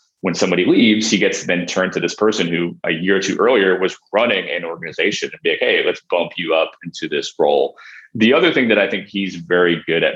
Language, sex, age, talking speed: English, male, 30-49, 240 wpm